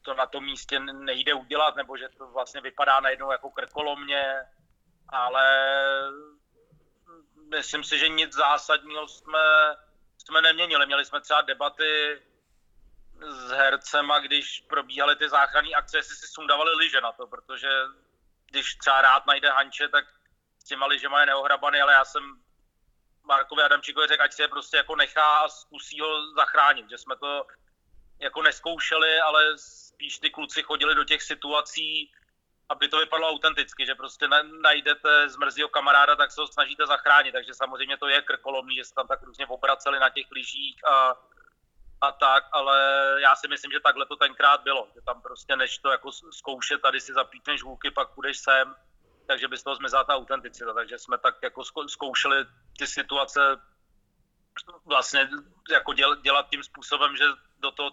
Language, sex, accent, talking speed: Czech, male, native, 165 wpm